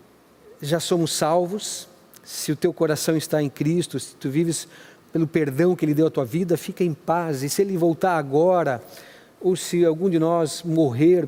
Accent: Brazilian